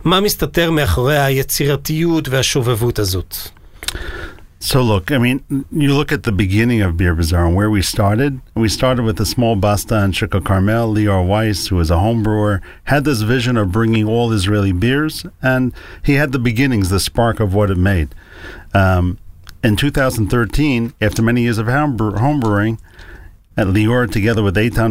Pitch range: 95-125 Hz